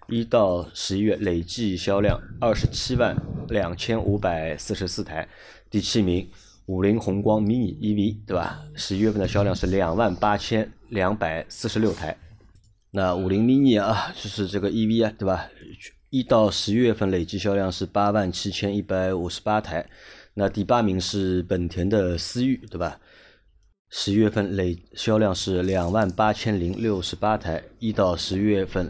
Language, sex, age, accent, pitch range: Chinese, male, 20-39, native, 90-110 Hz